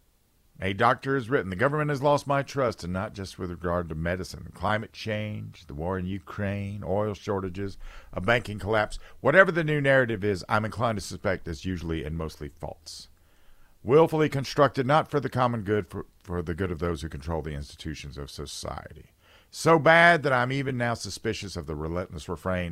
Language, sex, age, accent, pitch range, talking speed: English, male, 50-69, American, 85-120 Hz, 190 wpm